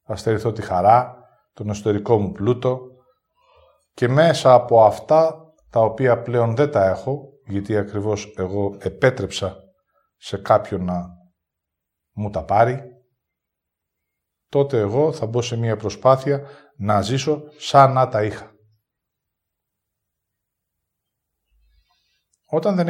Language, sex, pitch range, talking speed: English, male, 95-130 Hz, 115 wpm